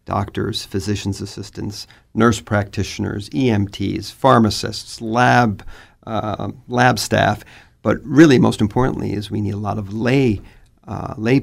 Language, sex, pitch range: English, male, 100-115 Hz